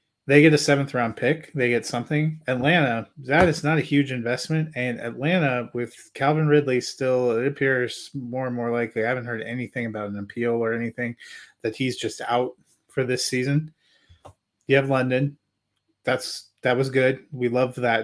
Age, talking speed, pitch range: 30-49, 180 wpm, 115-135 Hz